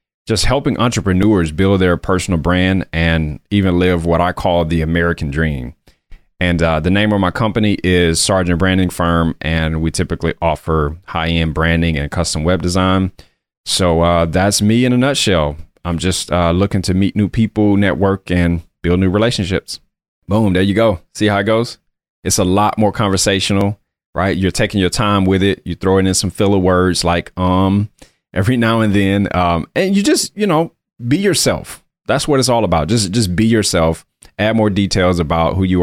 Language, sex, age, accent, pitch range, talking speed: English, male, 30-49, American, 85-105 Hz, 190 wpm